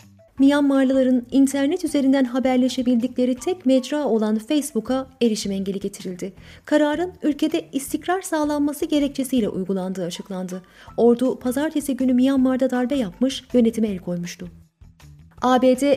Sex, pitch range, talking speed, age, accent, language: female, 220-285 Hz, 105 wpm, 30-49, native, Turkish